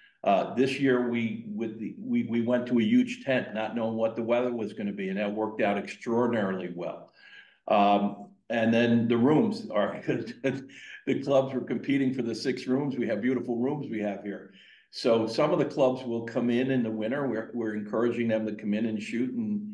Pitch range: 110-130 Hz